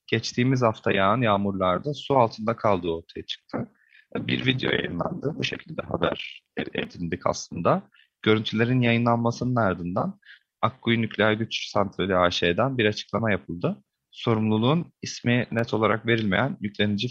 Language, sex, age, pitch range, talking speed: Turkish, male, 30-49, 100-130 Hz, 120 wpm